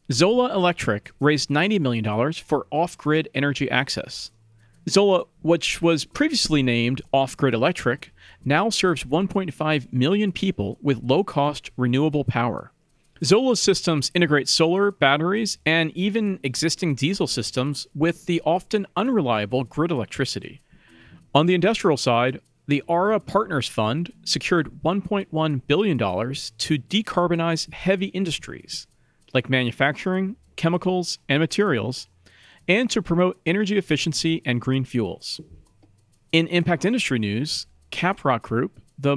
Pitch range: 130-180 Hz